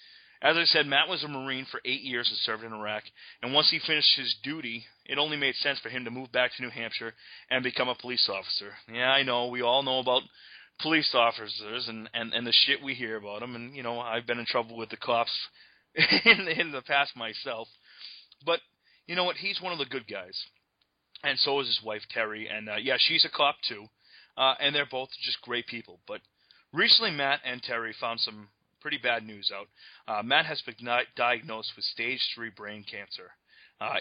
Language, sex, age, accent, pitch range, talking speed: English, male, 30-49, American, 115-135 Hz, 215 wpm